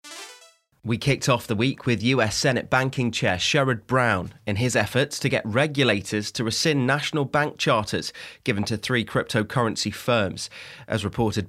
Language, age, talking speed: English, 30-49, 155 wpm